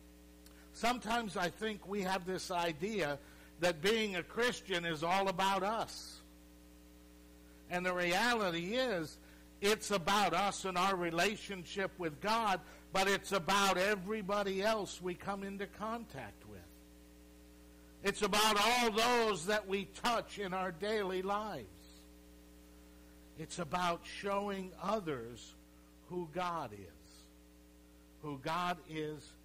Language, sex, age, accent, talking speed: English, male, 60-79, American, 120 wpm